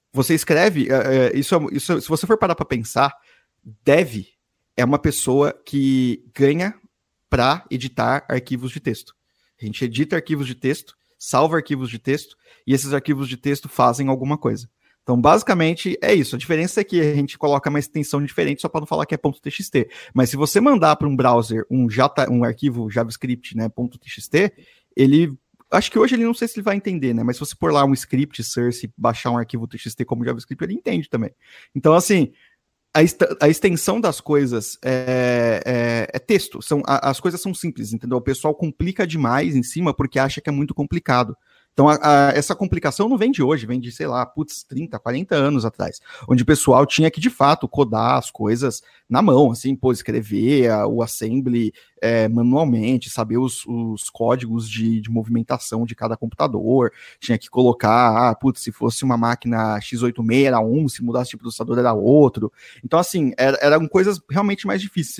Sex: male